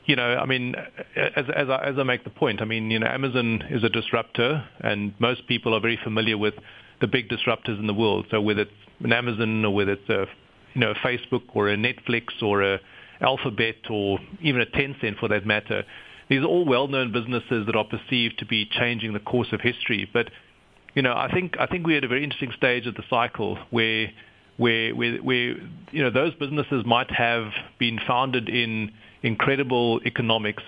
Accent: South African